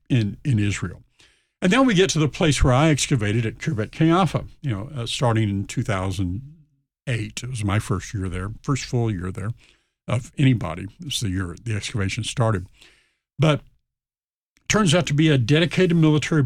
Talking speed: 180 wpm